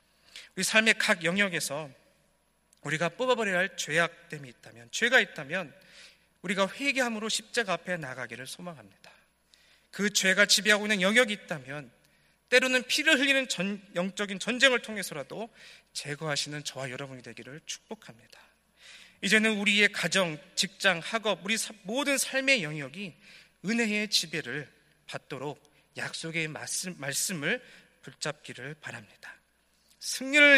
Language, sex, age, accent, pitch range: Korean, male, 40-59, native, 145-205 Hz